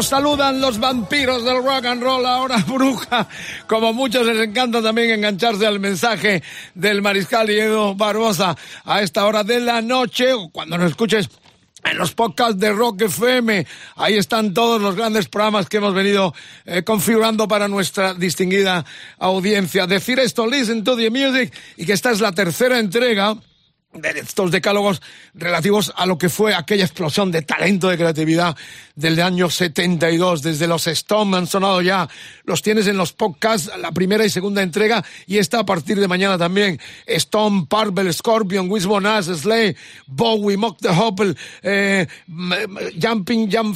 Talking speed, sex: 160 wpm, male